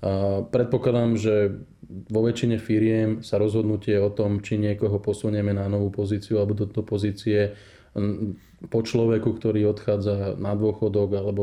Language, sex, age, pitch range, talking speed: Slovak, male, 20-39, 100-110 Hz, 145 wpm